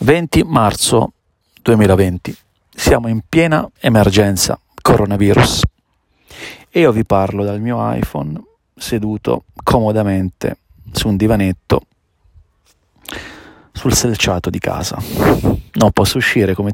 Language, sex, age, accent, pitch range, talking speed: Italian, male, 40-59, native, 95-110 Hz, 100 wpm